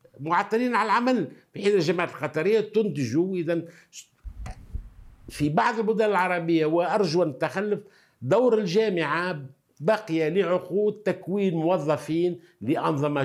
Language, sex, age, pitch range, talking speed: Arabic, male, 60-79, 140-200 Hz, 100 wpm